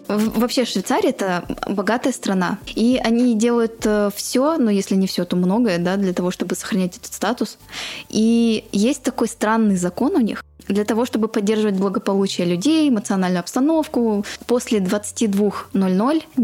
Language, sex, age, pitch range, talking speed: Russian, female, 20-39, 195-240 Hz, 145 wpm